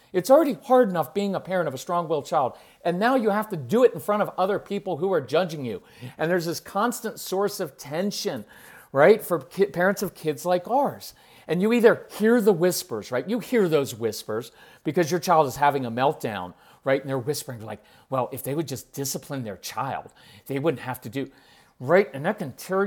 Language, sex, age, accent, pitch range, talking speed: English, male, 40-59, American, 140-190 Hz, 215 wpm